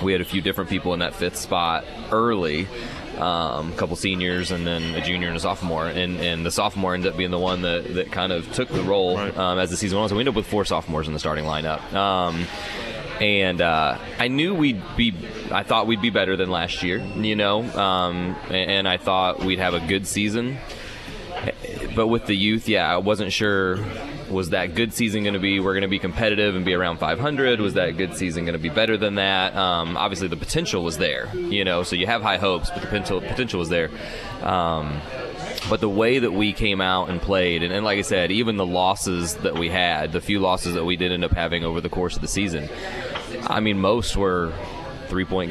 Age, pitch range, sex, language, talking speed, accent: 20-39, 90-105 Hz, male, English, 230 wpm, American